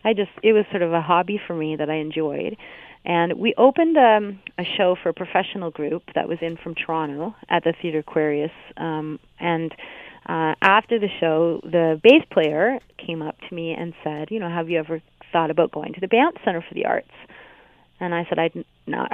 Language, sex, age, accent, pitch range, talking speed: English, female, 30-49, American, 165-200 Hz, 205 wpm